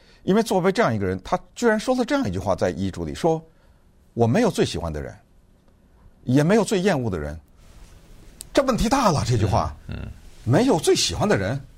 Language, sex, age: Chinese, male, 60-79